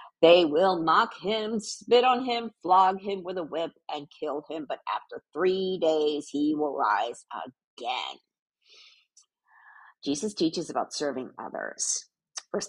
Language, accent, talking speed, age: English, American, 135 wpm, 50-69